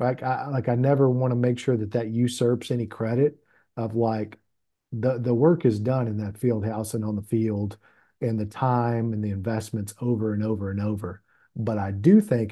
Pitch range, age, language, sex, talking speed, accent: 110-130 Hz, 40-59, English, male, 205 wpm, American